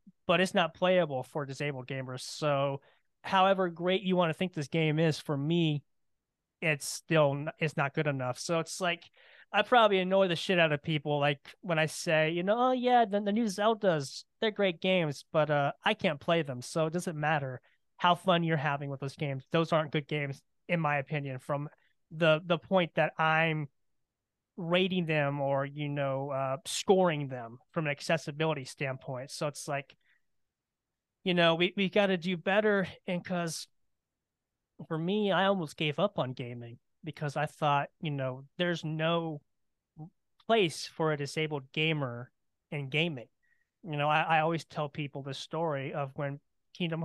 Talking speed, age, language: 180 wpm, 20-39, English